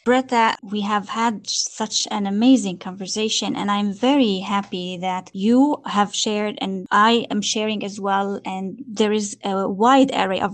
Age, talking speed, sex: 20-39, 165 wpm, female